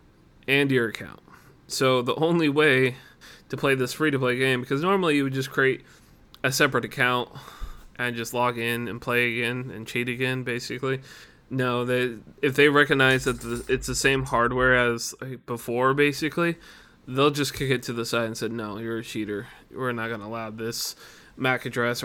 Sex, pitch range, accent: male, 115-130 Hz, American